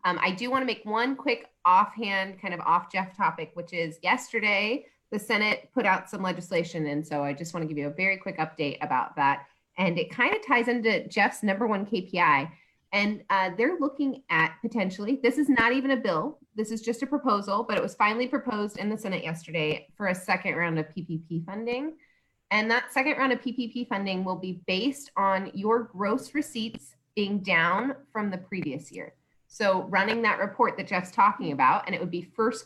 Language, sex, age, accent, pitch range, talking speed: English, female, 30-49, American, 170-225 Hz, 210 wpm